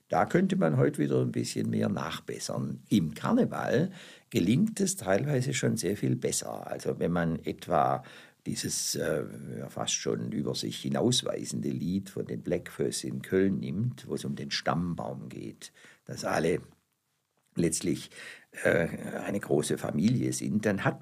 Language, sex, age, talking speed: German, male, 60-79, 145 wpm